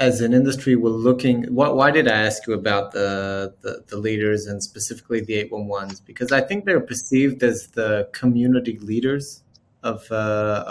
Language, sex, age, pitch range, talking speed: English, male, 30-49, 110-130 Hz, 175 wpm